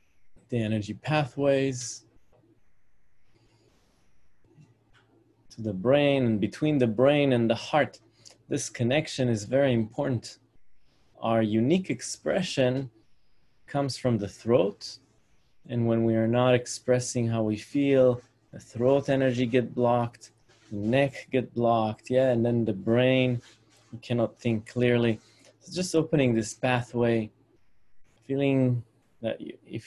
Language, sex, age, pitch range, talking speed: English, male, 20-39, 115-135 Hz, 120 wpm